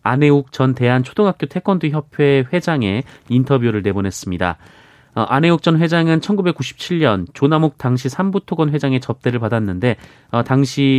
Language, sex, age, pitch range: Korean, male, 30-49, 110-145 Hz